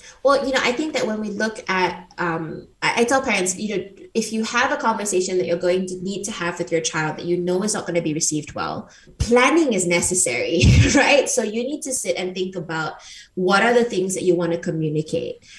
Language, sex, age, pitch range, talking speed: English, female, 20-39, 175-215 Hz, 245 wpm